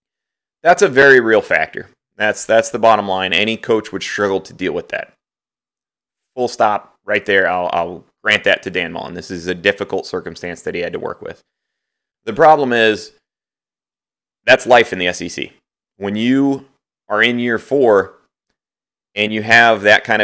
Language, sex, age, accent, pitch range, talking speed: English, male, 30-49, American, 95-115 Hz, 175 wpm